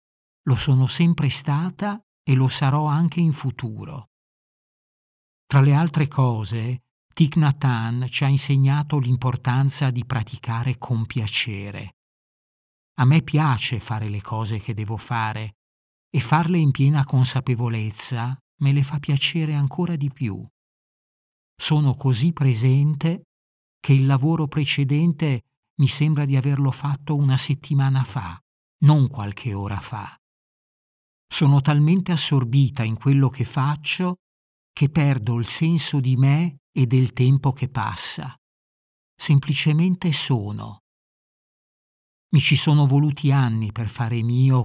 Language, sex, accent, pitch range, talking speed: Italian, male, native, 115-145 Hz, 125 wpm